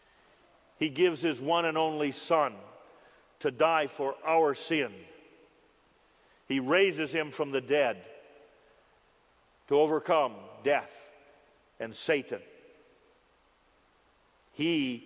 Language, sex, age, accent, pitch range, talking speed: English, male, 50-69, American, 150-205 Hz, 95 wpm